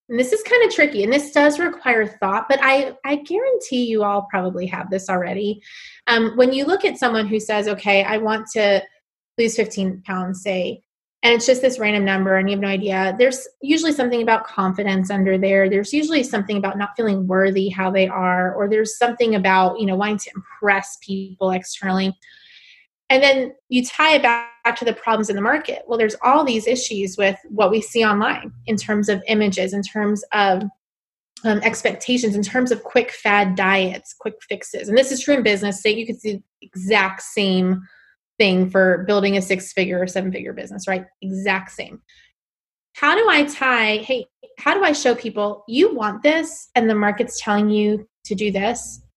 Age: 20-39